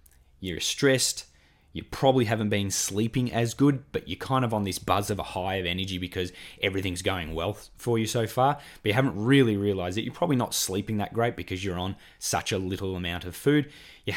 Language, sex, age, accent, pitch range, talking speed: English, male, 20-39, Australian, 95-135 Hz, 215 wpm